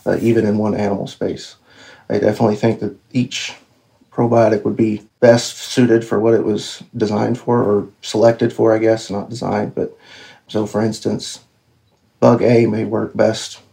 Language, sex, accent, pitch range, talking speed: English, male, American, 105-115 Hz, 165 wpm